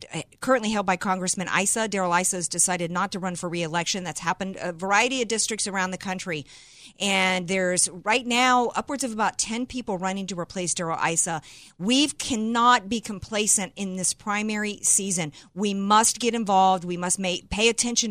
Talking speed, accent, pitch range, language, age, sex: 180 wpm, American, 185-220 Hz, English, 50-69, female